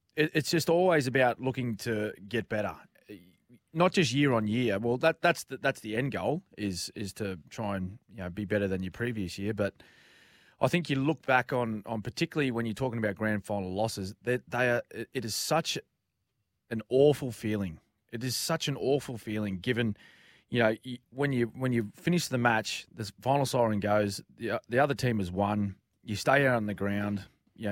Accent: Australian